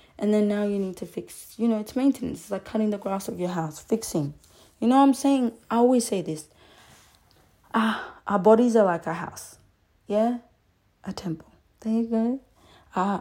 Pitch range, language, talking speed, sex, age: 180-220 Hz, English, 200 wpm, female, 20-39